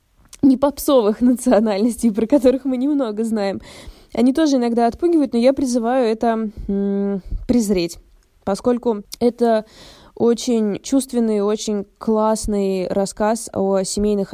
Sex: female